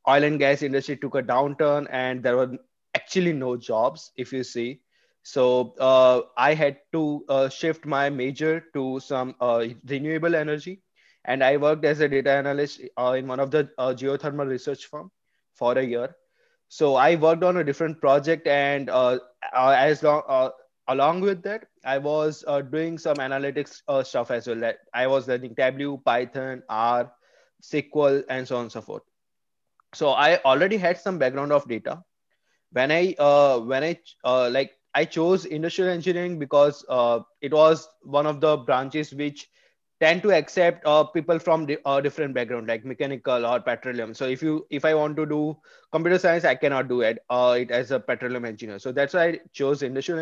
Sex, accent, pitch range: male, Indian, 130-160 Hz